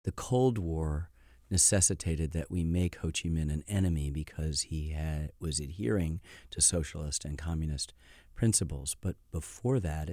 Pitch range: 80-95 Hz